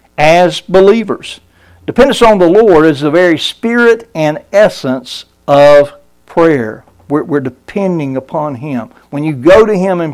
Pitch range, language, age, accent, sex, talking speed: 140-180 Hz, English, 60-79, American, male, 150 wpm